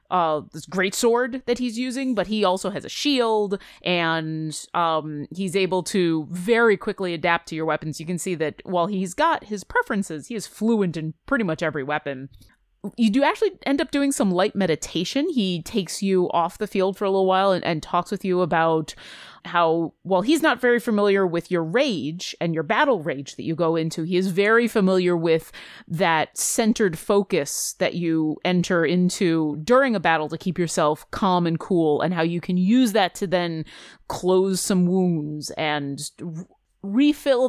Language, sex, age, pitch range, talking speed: English, female, 30-49, 165-225 Hz, 185 wpm